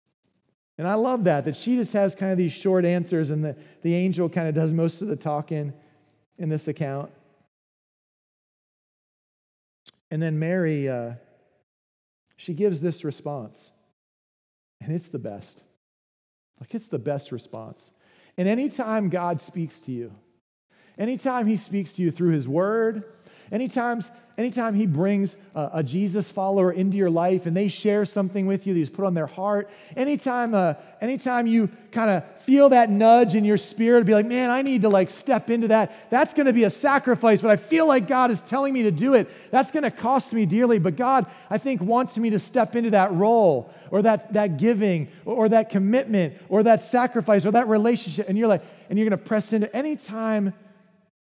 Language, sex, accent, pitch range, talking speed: English, male, American, 170-230 Hz, 185 wpm